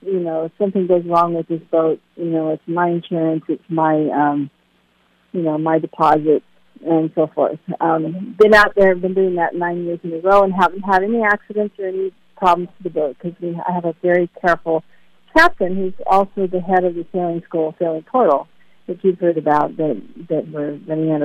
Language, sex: English, female